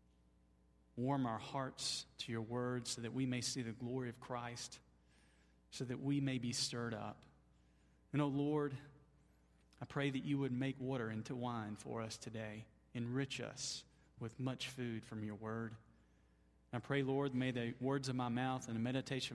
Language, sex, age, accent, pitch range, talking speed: English, male, 40-59, American, 115-155 Hz, 180 wpm